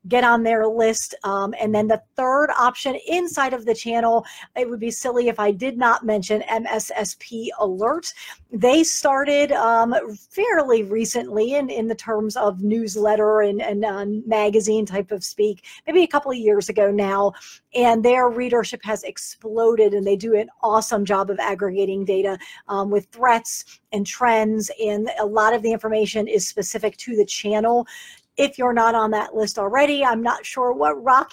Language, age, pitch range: English, 40-59, 215-265 Hz